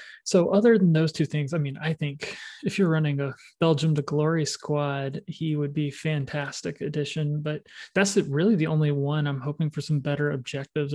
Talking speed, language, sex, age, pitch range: 190 wpm, English, male, 20-39, 140-170 Hz